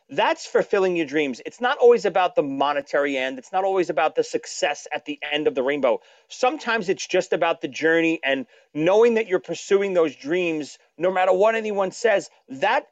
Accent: American